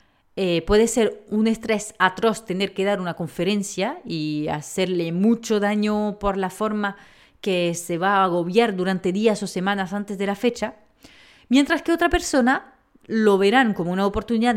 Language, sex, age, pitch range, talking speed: Spanish, female, 30-49, 185-245 Hz, 165 wpm